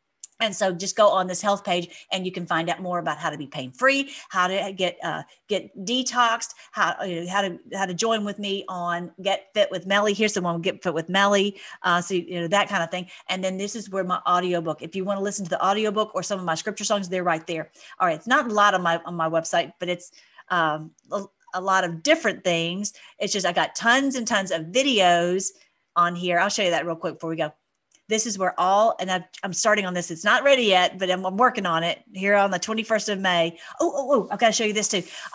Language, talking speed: English, 260 wpm